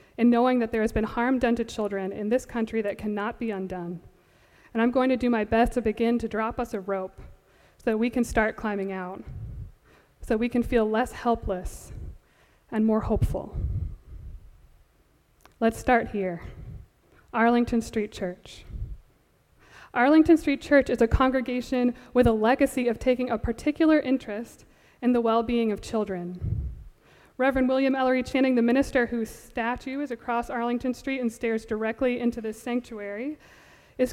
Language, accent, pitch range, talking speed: English, American, 220-255 Hz, 160 wpm